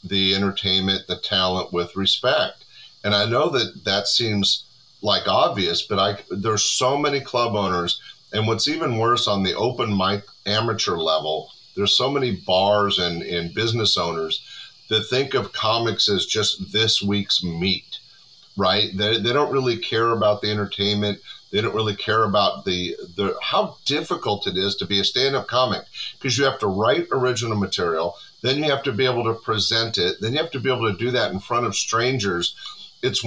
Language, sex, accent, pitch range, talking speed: English, male, American, 100-120 Hz, 185 wpm